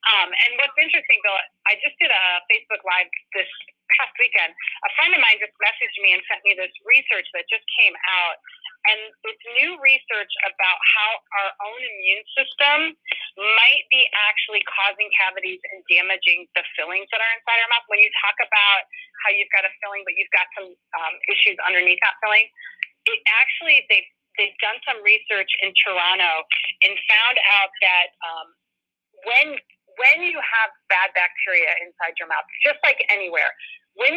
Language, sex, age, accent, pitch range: Chinese, female, 30-49, American, 190-250 Hz